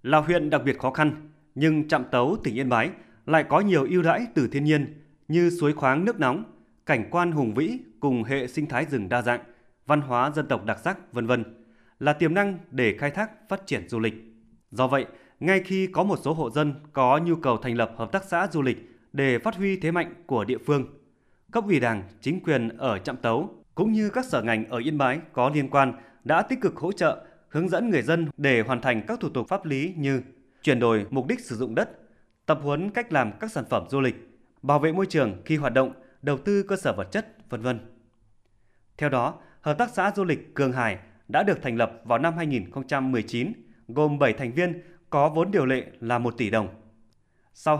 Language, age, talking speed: Vietnamese, 20-39, 220 wpm